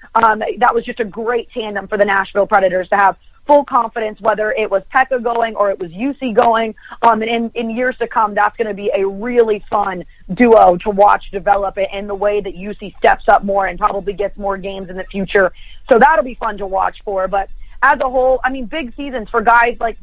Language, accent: English, American